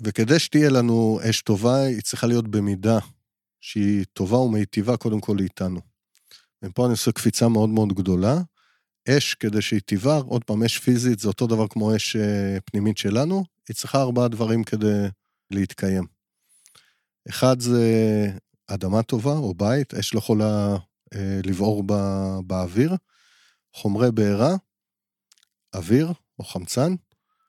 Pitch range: 100-125 Hz